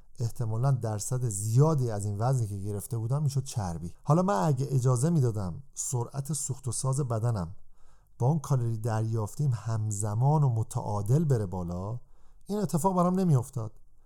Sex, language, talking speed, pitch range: male, Persian, 145 wpm, 110-140 Hz